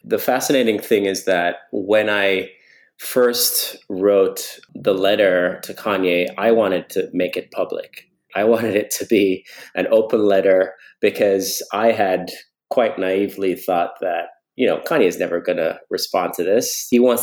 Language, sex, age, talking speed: English, male, 30-49, 160 wpm